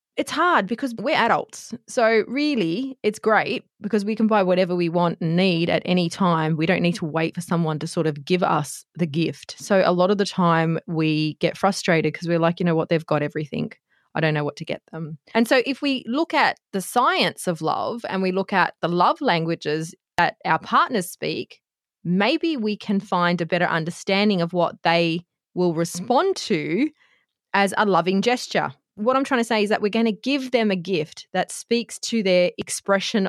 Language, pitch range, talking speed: English, 175-240 Hz, 210 wpm